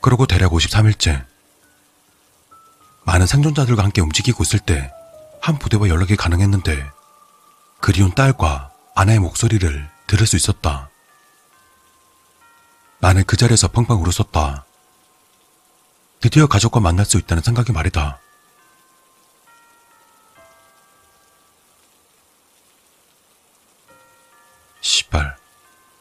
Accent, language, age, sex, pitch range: native, Korean, 40-59, male, 80-120 Hz